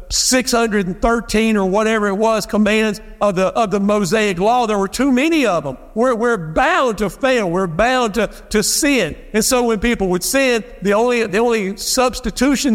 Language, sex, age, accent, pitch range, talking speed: English, male, 50-69, American, 200-245 Hz, 185 wpm